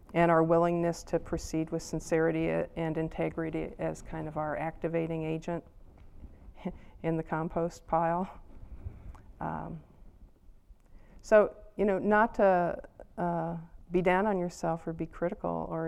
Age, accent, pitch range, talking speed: 50-69, American, 155-190 Hz, 130 wpm